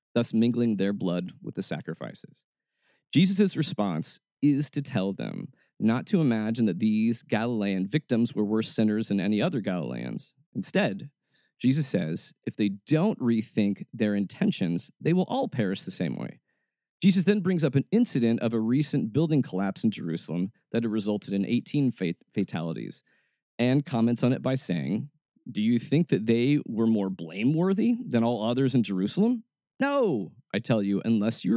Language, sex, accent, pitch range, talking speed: English, male, American, 105-145 Hz, 165 wpm